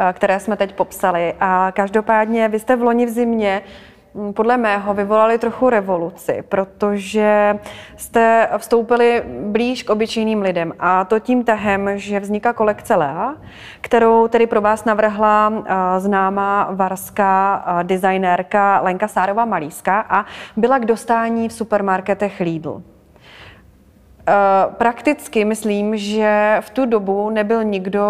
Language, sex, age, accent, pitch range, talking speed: Czech, female, 30-49, native, 195-230 Hz, 125 wpm